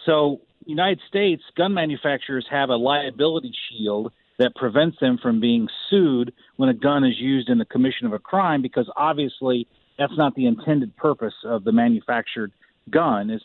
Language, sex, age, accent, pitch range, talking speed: English, male, 40-59, American, 130-195 Hz, 170 wpm